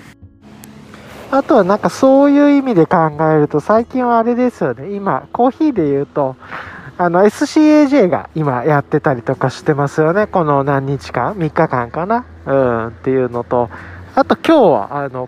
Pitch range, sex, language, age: 135-205 Hz, male, Japanese, 20-39